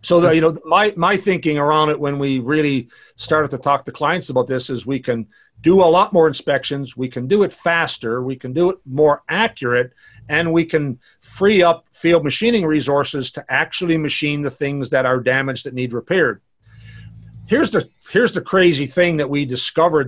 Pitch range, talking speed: 130-165 Hz, 195 wpm